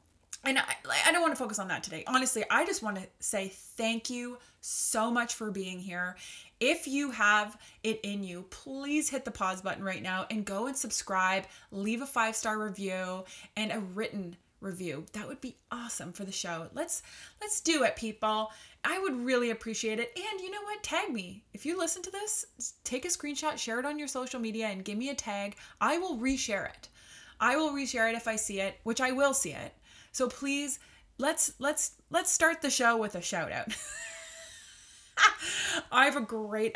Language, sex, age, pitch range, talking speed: English, female, 20-39, 200-265 Hz, 200 wpm